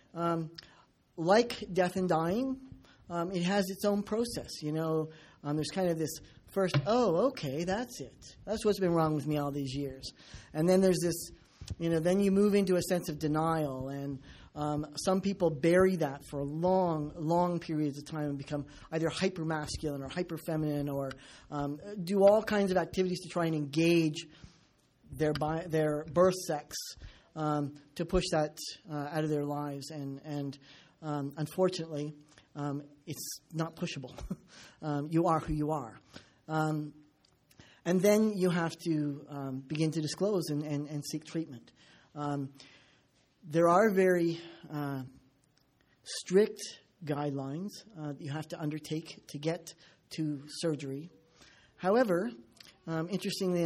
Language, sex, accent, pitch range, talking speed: English, male, American, 145-180 Hz, 155 wpm